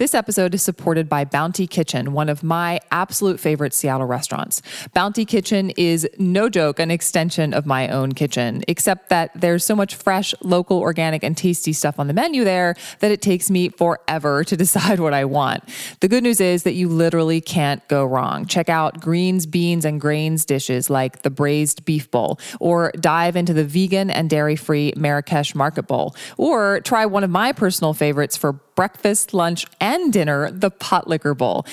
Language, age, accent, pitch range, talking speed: English, 20-39, American, 150-190 Hz, 185 wpm